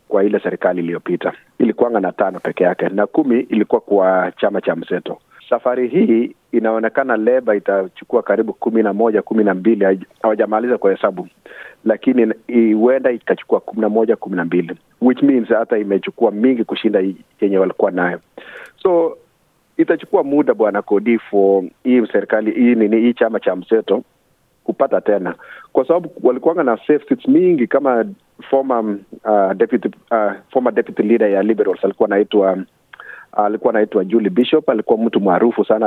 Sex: male